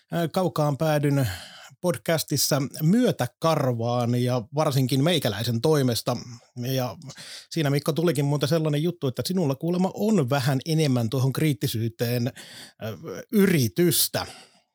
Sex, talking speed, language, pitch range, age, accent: male, 100 wpm, Finnish, 130-165 Hz, 30-49, native